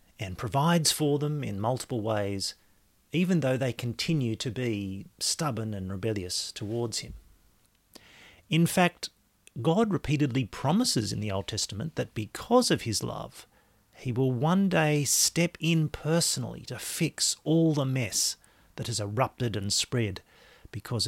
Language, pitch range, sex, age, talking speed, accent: English, 110-145 Hz, male, 40-59, 140 wpm, Australian